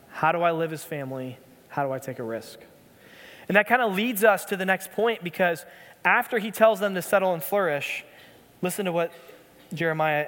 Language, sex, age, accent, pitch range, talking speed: English, male, 20-39, American, 160-205 Hz, 205 wpm